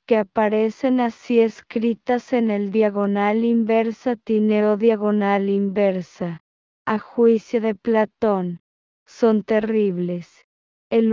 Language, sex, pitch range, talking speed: English, female, 205-235 Hz, 95 wpm